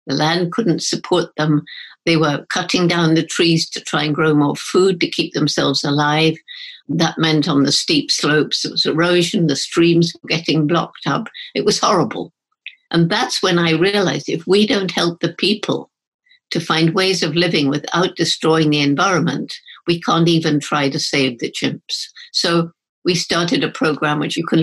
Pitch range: 150-185 Hz